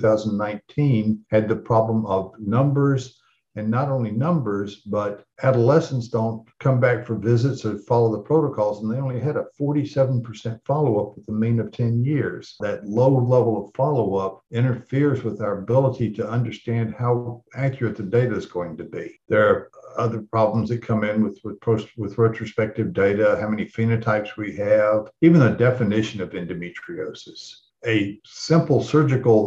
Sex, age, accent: male, 60-79, American